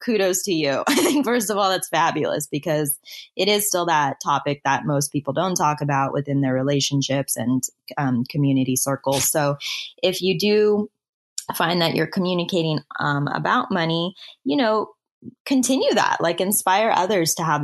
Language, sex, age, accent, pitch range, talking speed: English, female, 20-39, American, 145-205 Hz, 165 wpm